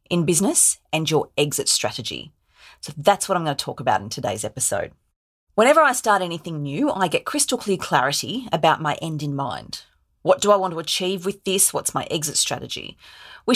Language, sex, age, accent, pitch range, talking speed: English, female, 30-49, Australian, 150-200 Hz, 200 wpm